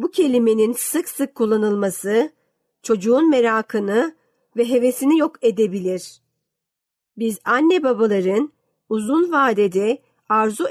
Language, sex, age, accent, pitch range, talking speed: Turkish, female, 50-69, native, 205-250 Hz, 95 wpm